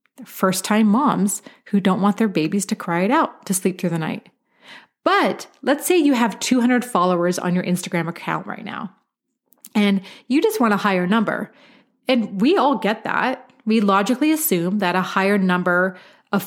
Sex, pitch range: female, 185-250 Hz